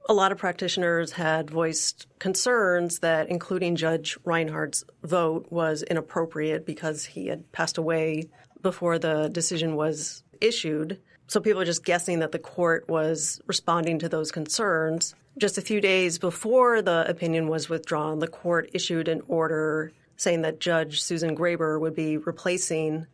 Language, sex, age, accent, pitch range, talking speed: English, female, 30-49, American, 160-180 Hz, 155 wpm